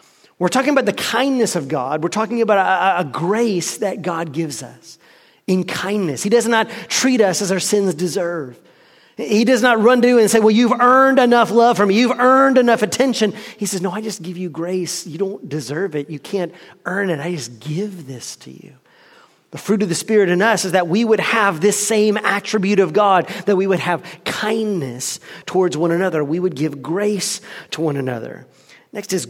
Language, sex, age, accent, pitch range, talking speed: English, male, 30-49, American, 170-220 Hz, 210 wpm